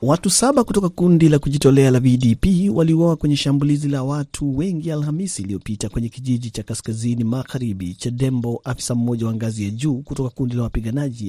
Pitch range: 115-140 Hz